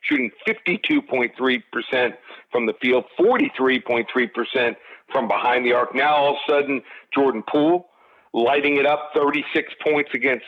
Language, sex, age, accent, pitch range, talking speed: English, male, 50-69, American, 125-170 Hz, 130 wpm